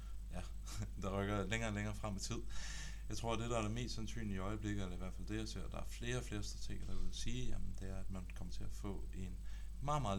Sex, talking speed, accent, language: male, 290 wpm, native, Danish